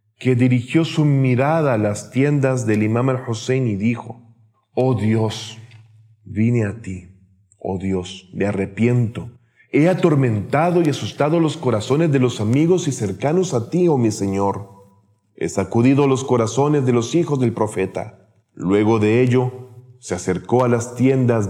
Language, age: Spanish, 40-59